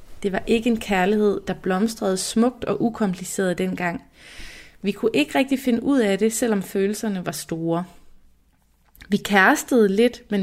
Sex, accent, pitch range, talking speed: female, native, 190-230 Hz, 155 wpm